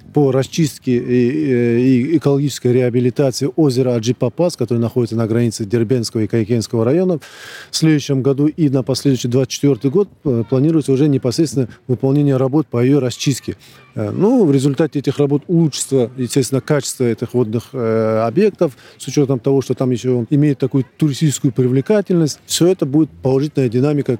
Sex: male